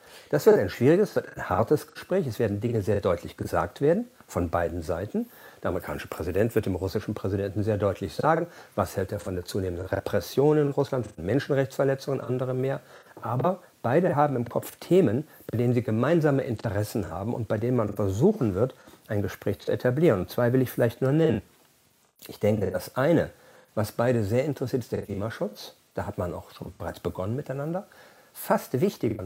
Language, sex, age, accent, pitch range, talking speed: German, male, 50-69, German, 105-140 Hz, 185 wpm